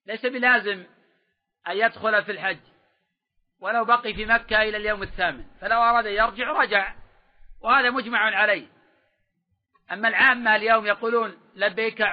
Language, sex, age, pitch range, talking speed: Arabic, male, 50-69, 205-245 Hz, 125 wpm